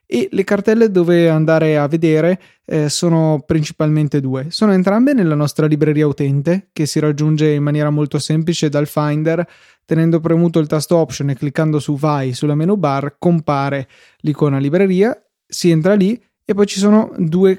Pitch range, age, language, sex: 145-170 Hz, 20-39, Italian, male